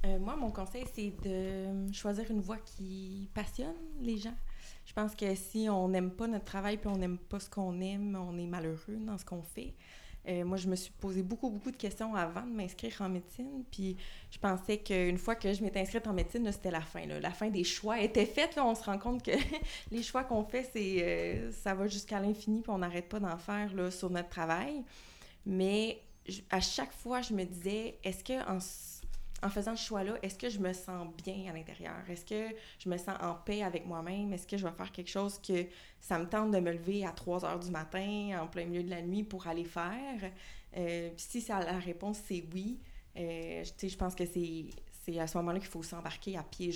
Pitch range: 175-210 Hz